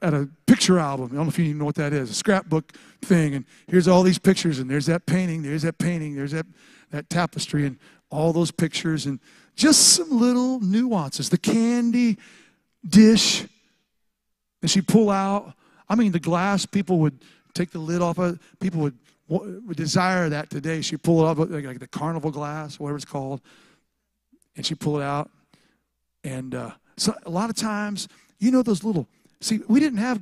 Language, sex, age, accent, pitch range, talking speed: English, male, 50-69, American, 165-215 Hz, 190 wpm